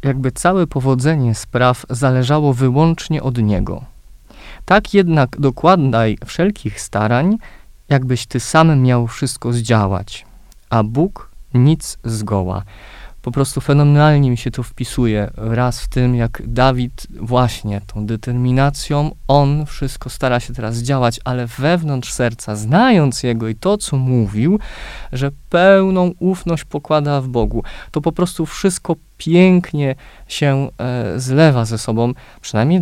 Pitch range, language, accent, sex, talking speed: 115-145 Hz, Polish, native, male, 125 wpm